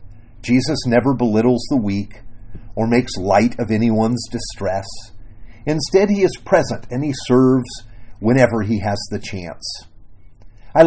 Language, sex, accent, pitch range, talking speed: English, male, American, 95-130 Hz, 135 wpm